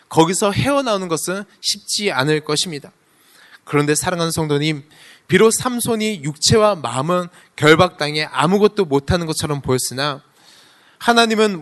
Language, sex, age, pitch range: Korean, male, 20-39, 145-200 Hz